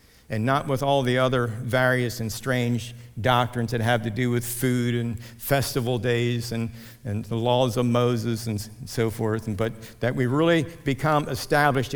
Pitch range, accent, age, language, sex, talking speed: 115-130 Hz, American, 50-69, English, male, 170 wpm